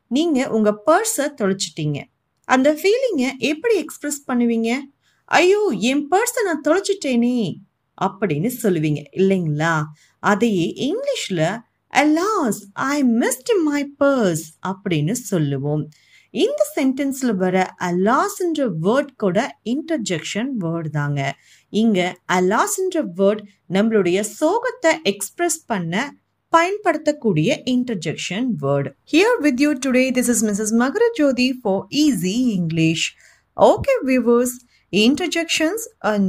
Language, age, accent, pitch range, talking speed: Tamil, 30-49, native, 185-295 Hz, 105 wpm